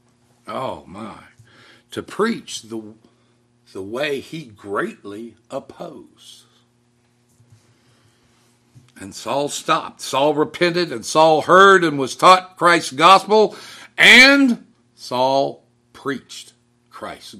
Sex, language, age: male, English, 60-79